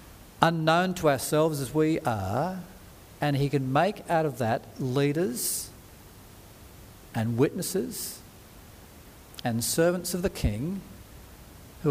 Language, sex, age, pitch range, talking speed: English, male, 50-69, 110-145 Hz, 110 wpm